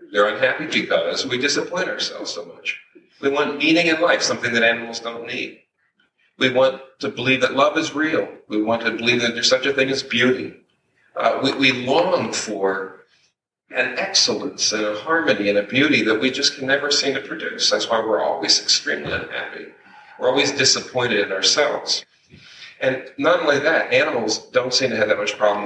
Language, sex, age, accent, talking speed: English, male, 50-69, American, 190 wpm